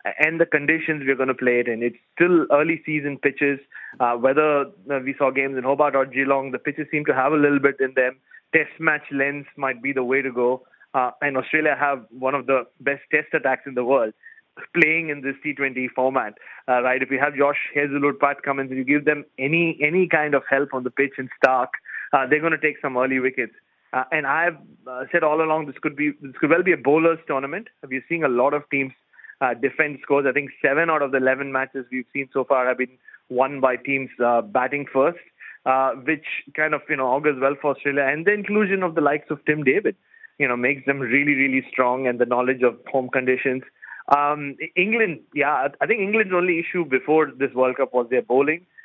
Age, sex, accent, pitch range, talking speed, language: 30-49, male, Indian, 130-150 Hz, 225 wpm, English